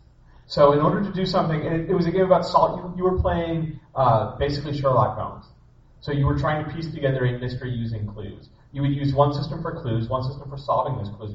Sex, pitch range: male, 125-170 Hz